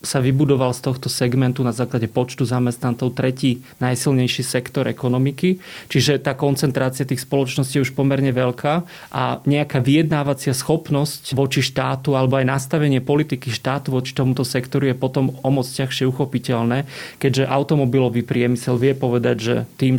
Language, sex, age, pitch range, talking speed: Slovak, male, 30-49, 125-140 Hz, 145 wpm